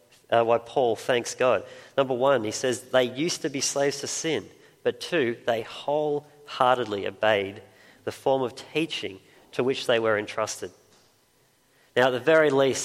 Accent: Australian